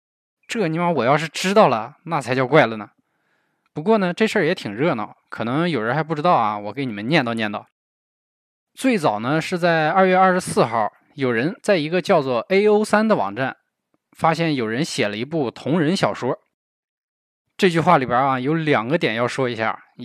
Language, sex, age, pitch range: Chinese, male, 20-39, 130-180 Hz